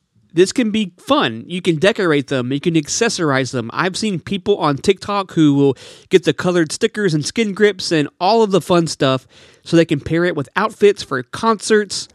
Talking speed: 205 wpm